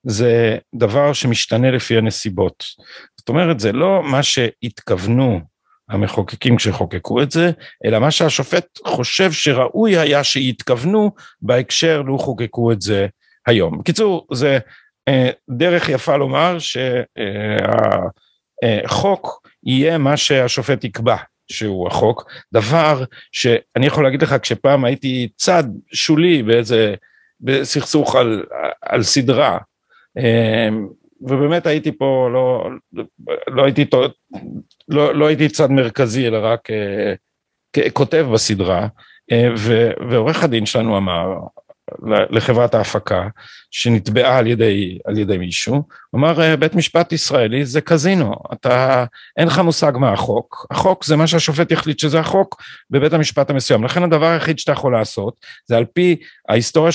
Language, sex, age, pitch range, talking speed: Hebrew, male, 50-69, 115-155 Hz, 120 wpm